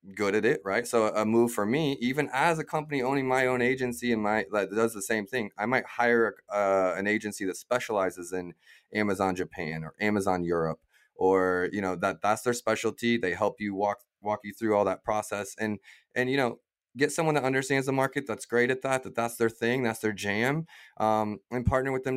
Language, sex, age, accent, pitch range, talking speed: English, male, 20-39, American, 95-120 Hz, 220 wpm